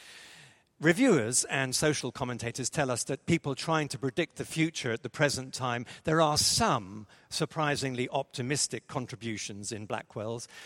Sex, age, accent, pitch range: male, 50-69, British, 125-160 Hz